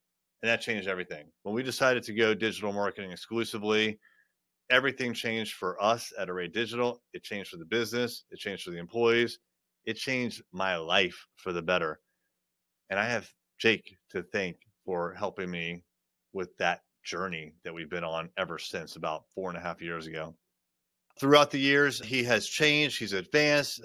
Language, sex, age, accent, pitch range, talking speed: English, male, 30-49, American, 95-125 Hz, 175 wpm